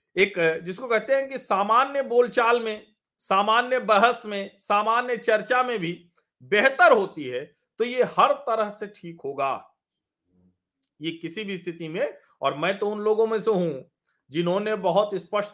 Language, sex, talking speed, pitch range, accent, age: Hindi, male, 160 wpm, 165-215 Hz, native, 40-59